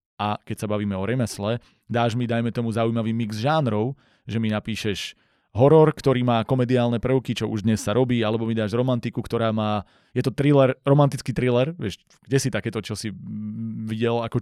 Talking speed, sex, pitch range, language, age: 185 wpm, male, 110-135 Hz, Slovak, 20-39